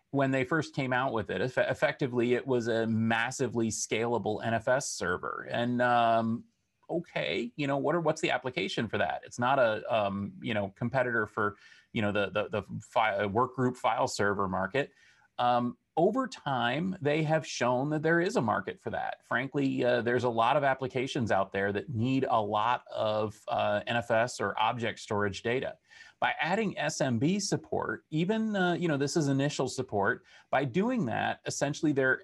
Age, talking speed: 30-49, 175 wpm